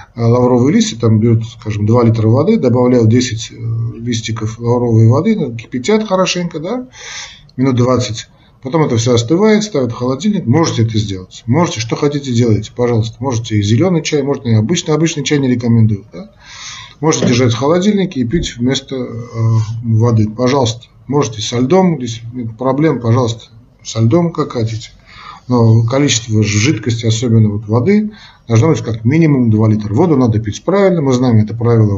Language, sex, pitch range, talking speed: Russian, male, 110-140 Hz, 155 wpm